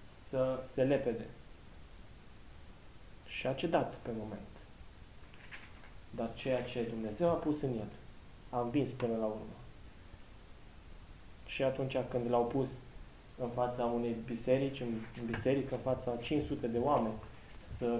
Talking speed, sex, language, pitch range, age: 130 wpm, male, Romanian, 110-135 Hz, 20-39